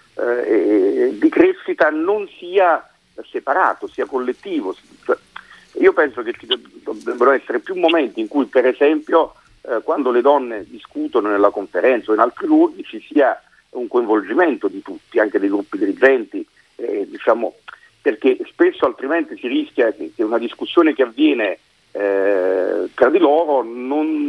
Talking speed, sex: 150 wpm, male